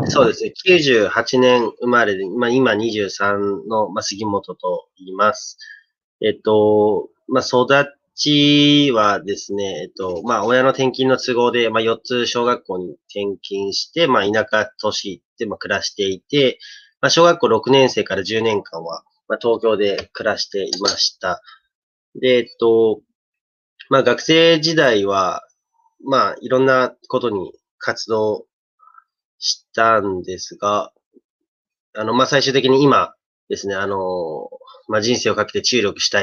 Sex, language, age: male, Japanese, 30-49